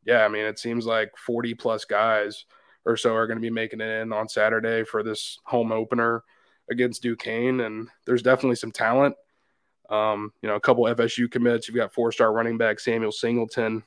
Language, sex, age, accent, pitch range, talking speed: English, male, 20-39, American, 110-120 Hz, 190 wpm